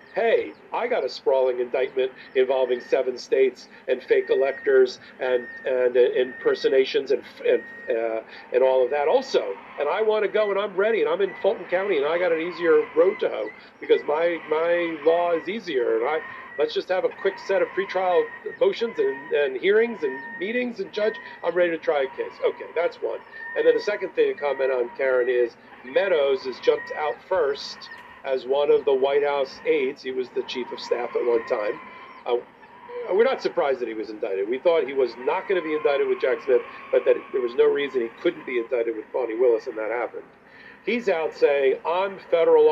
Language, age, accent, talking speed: English, 40-59, American, 210 wpm